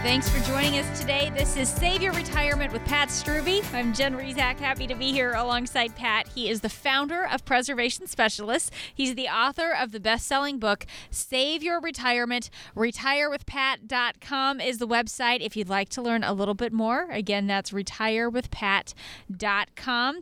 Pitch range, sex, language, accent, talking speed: 215-265 Hz, female, English, American, 165 wpm